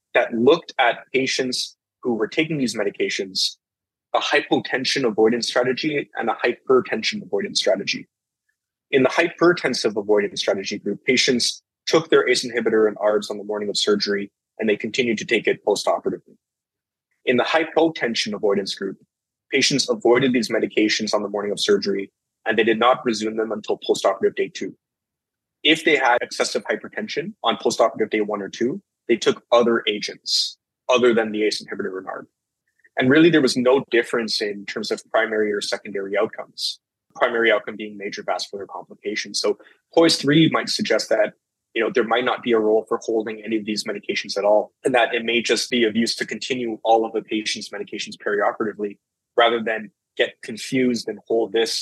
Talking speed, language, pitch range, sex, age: 175 wpm, English, 105-135 Hz, male, 20-39